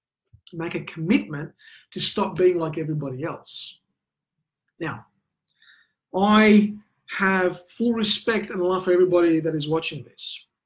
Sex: male